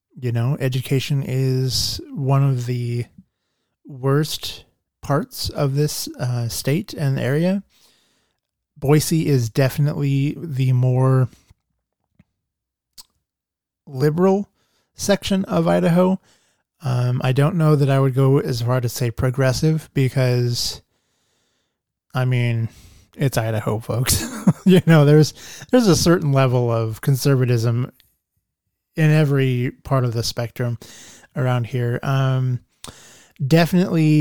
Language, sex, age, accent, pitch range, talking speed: English, male, 20-39, American, 120-145 Hz, 110 wpm